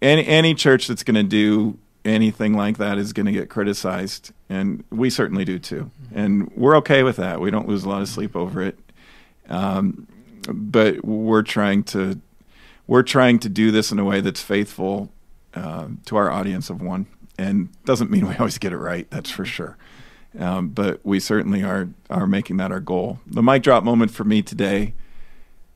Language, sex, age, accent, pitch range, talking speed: English, male, 40-59, American, 100-120 Hz, 195 wpm